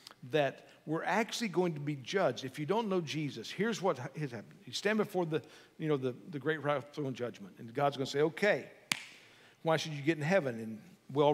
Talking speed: 220 wpm